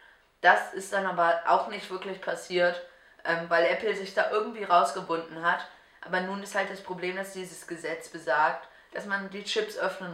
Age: 20-39